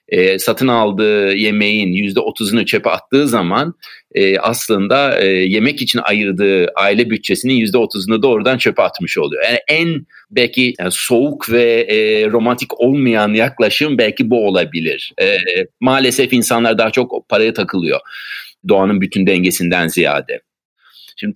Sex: male